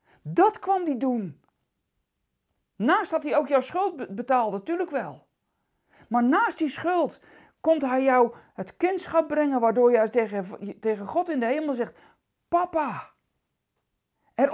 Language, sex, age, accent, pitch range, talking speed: Dutch, male, 40-59, Dutch, 220-305 Hz, 135 wpm